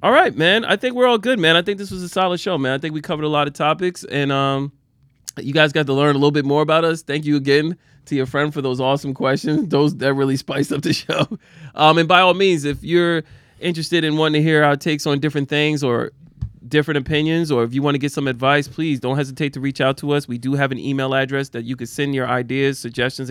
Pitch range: 125-145 Hz